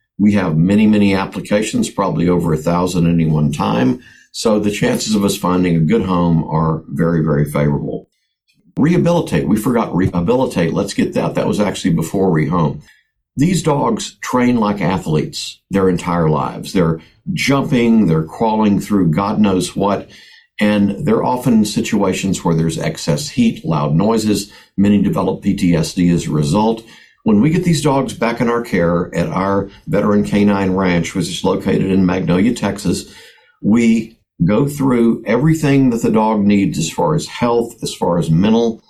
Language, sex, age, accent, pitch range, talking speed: English, male, 50-69, American, 90-115 Hz, 165 wpm